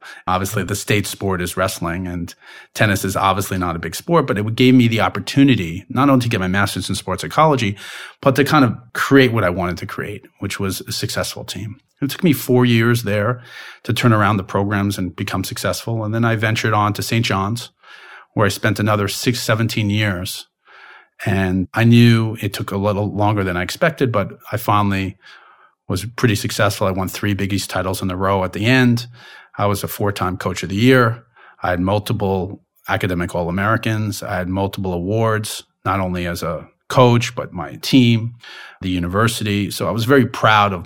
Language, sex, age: English, male, 40-59